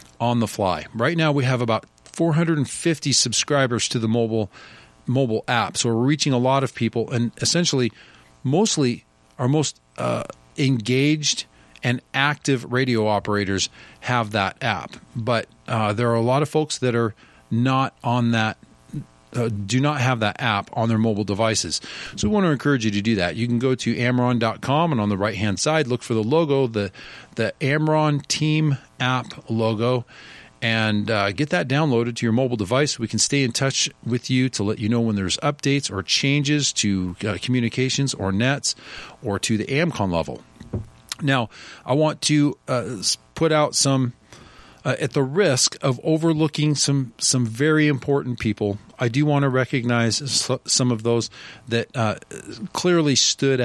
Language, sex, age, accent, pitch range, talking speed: English, male, 40-59, American, 110-140 Hz, 175 wpm